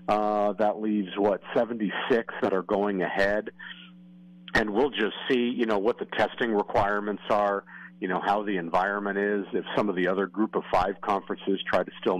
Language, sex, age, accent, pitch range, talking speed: English, male, 50-69, American, 95-115 Hz, 185 wpm